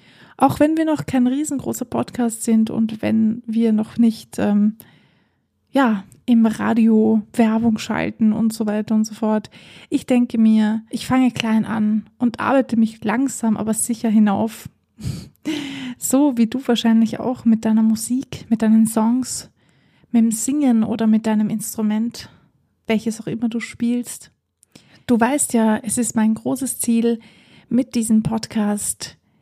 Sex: female